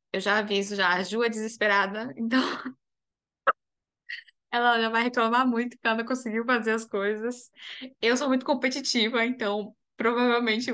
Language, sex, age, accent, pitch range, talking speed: Portuguese, female, 10-29, Brazilian, 200-245 Hz, 150 wpm